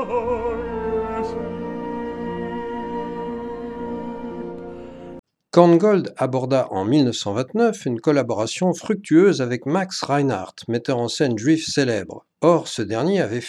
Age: 50-69